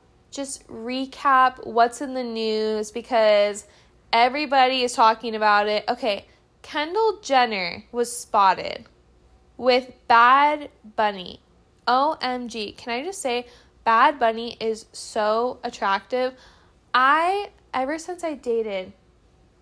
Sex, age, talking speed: female, 10-29, 105 wpm